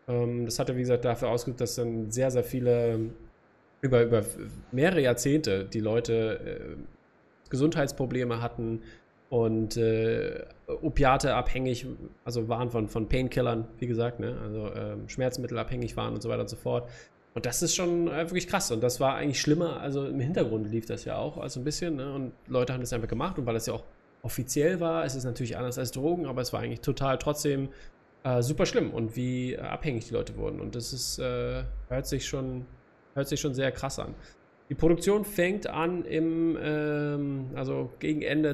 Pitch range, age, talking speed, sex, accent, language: 120-150 Hz, 20-39, 190 wpm, male, German, German